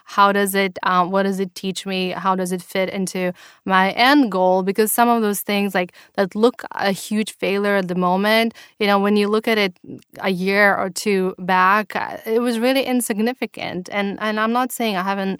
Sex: female